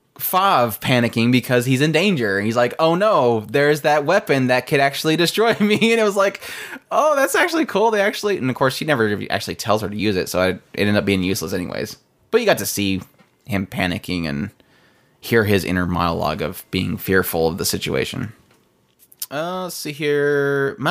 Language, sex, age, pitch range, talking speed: English, male, 20-39, 105-150 Hz, 200 wpm